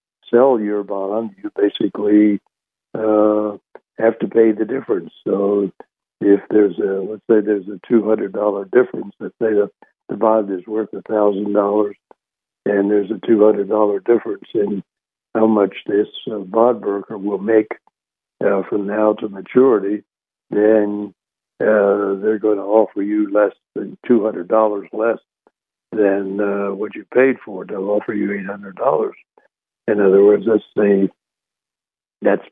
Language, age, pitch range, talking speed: English, 60-79, 100-110 Hz, 140 wpm